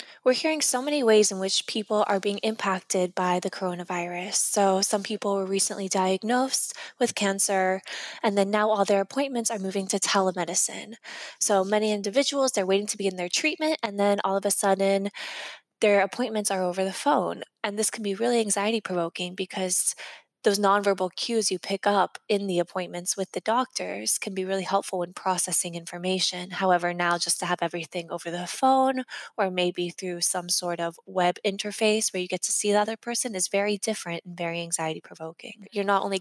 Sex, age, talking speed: female, 20-39, 190 wpm